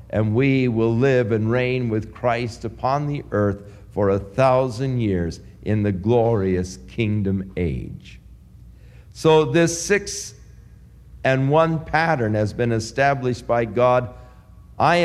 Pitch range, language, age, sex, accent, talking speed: 95-130 Hz, English, 50-69, male, American, 130 wpm